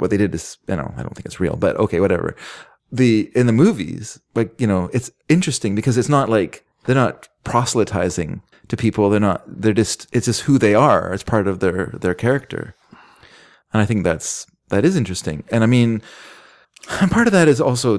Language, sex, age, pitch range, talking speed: English, male, 30-49, 100-125 Hz, 210 wpm